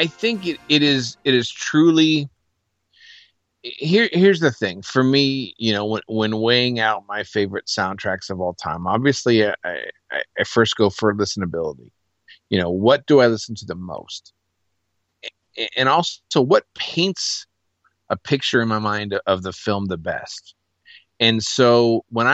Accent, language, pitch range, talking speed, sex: American, English, 95-115 Hz, 165 wpm, male